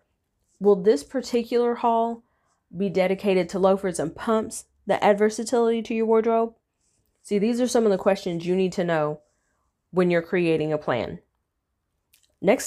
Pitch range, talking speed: 160-215 Hz, 155 wpm